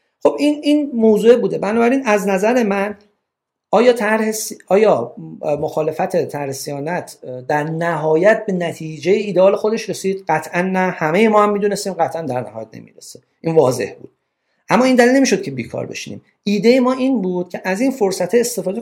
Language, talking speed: Persian, 160 wpm